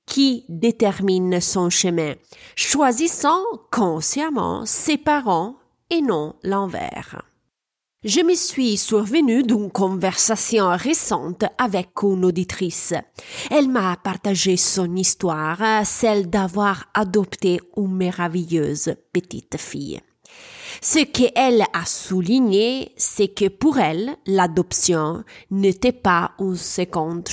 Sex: female